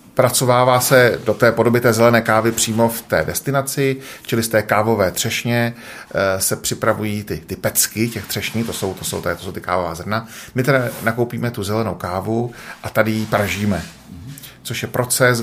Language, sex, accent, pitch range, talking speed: Czech, male, native, 105-120 Hz, 190 wpm